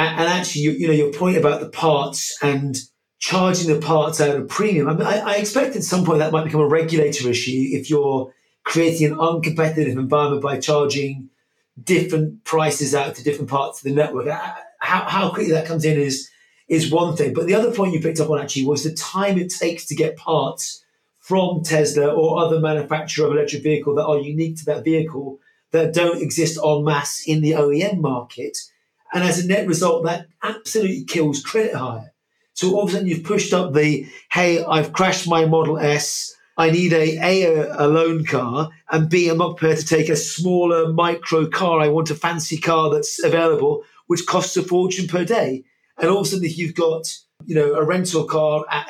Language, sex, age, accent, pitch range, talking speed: English, male, 30-49, British, 150-180 Hz, 205 wpm